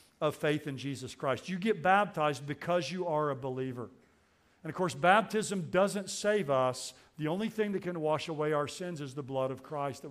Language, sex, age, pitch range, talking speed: English, male, 50-69, 135-175 Hz, 210 wpm